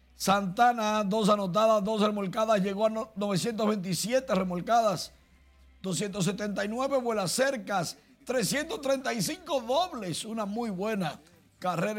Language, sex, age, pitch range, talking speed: Spanish, male, 50-69, 195-235 Hz, 95 wpm